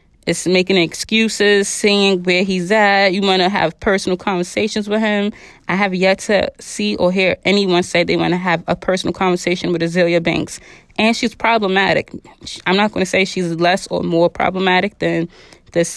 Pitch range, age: 175-195 Hz, 20-39